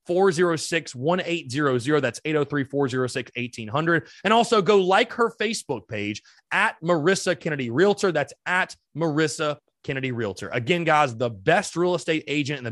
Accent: American